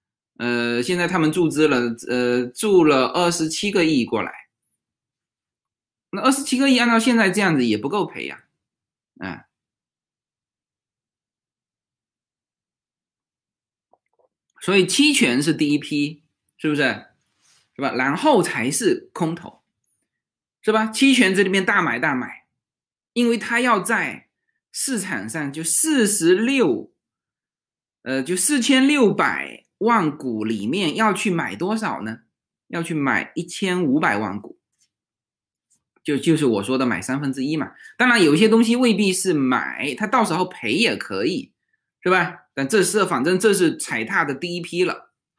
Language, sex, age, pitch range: Chinese, male, 20-39, 145-230 Hz